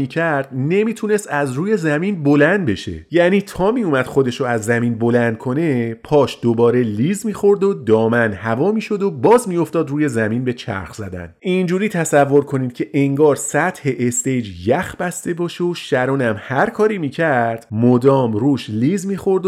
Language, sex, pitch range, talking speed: Persian, male, 120-180 Hz, 155 wpm